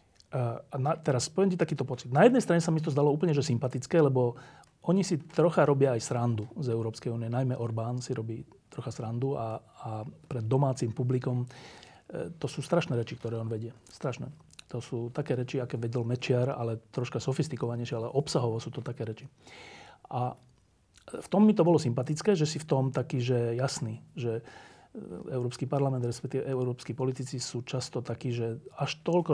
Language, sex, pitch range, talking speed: Slovak, male, 120-145 Hz, 180 wpm